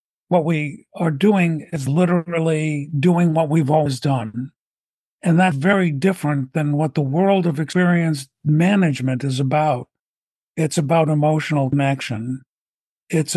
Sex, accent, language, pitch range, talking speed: male, American, English, 145-180 Hz, 130 wpm